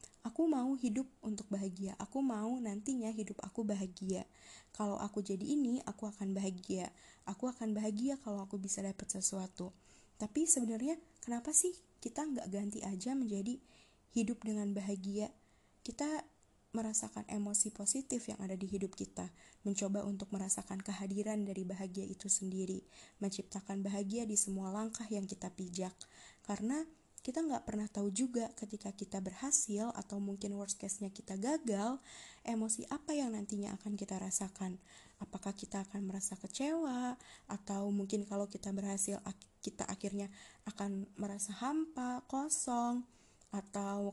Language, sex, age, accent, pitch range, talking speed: Indonesian, female, 20-39, native, 195-245 Hz, 140 wpm